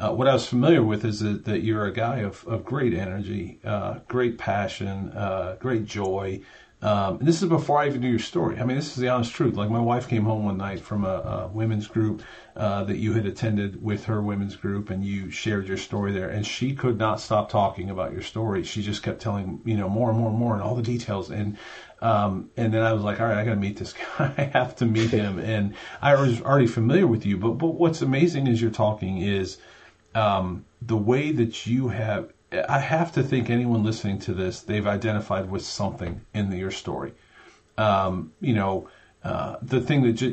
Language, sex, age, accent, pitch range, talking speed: English, male, 40-59, American, 100-120 Hz, 230 wpm